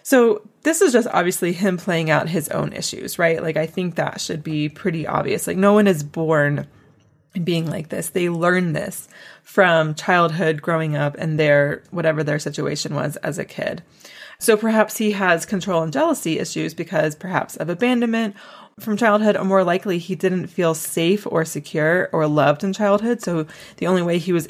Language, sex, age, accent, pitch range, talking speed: English, female, 20-39, American, 160-200 Hz, 190 wpm